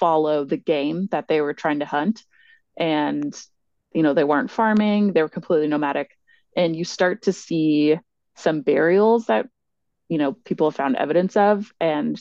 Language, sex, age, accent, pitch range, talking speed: English, female, 20-39, American, 155-210 Hz, 170 wpm